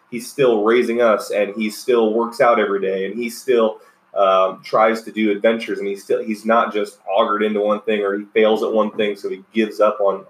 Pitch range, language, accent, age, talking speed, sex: 100-140 Hz, English, American, 20-39, 235 wpm, male